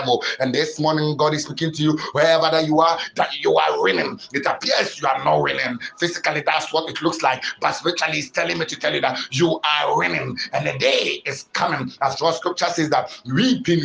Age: 60-79